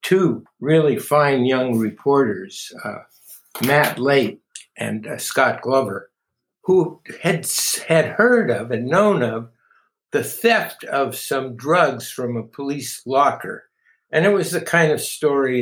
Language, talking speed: English, 140 wpm